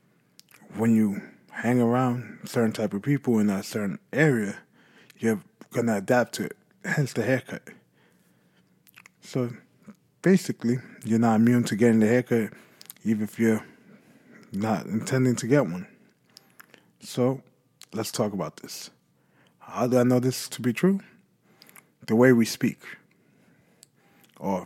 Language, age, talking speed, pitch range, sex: English, 20-39, 135 wpm, 110-135 Hz, male